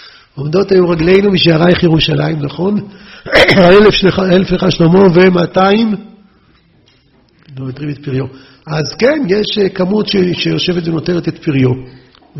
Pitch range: 145-200 Hz